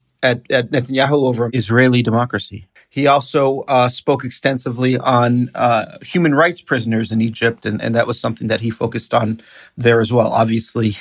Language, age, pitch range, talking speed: English, 40-59, 115-140 Hz, 170 wpm